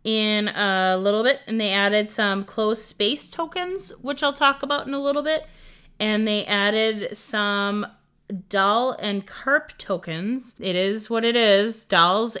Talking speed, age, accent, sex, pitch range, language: 160 wpm, 30-49, American, female, 205-275 Hz, English